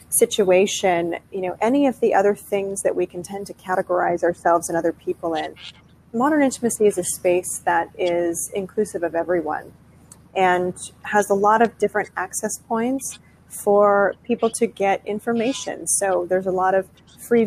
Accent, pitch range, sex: American, 180-230 Hz, female